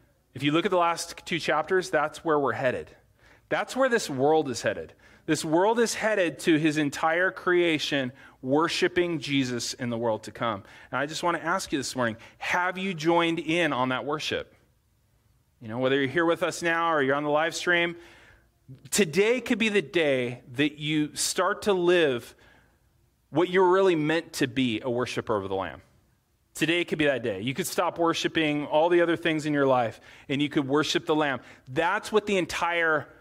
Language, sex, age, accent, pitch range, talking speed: English, male, 30-49, American, 130-175 Hz, 200 wpm